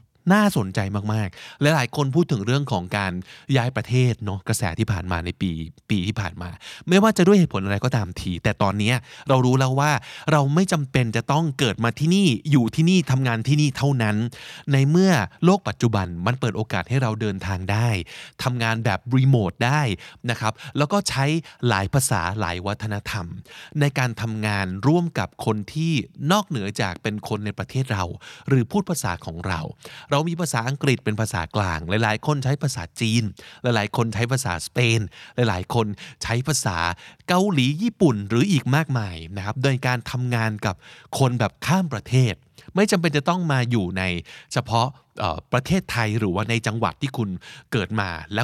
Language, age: Thai, 20-39